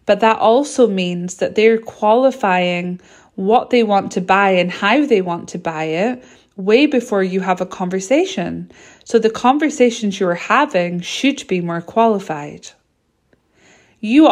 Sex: female